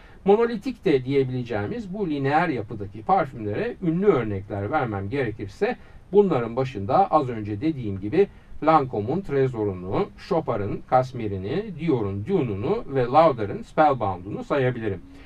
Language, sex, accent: Turkish, male, native